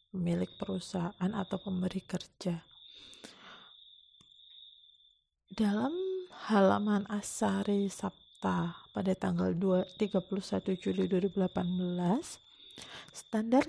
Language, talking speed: Indonesian, 70 wpm